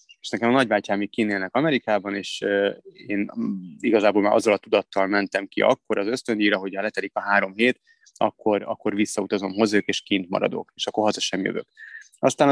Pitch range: 100-115 Hz